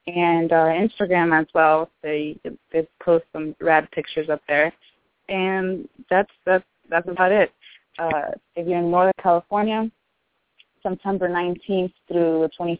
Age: 20-39